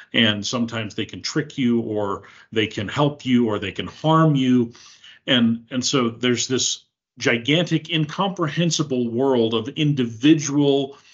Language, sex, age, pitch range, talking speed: English, male, 40-59, 115-140 Hz, 140 wpm